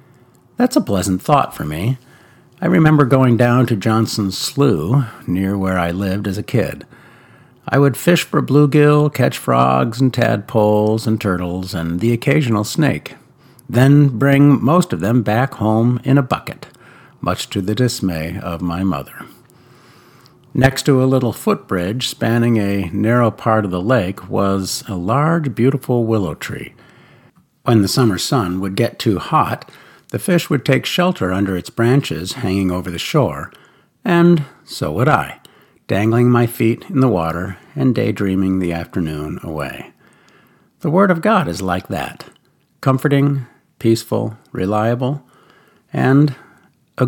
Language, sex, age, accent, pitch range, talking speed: English, male, 50-69, American, 95-135 Hz, 150 wpm